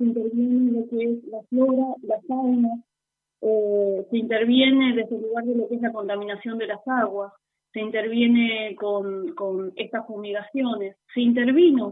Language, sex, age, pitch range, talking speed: Italian, female, 30-49, 200-245 Hz, 160 wpm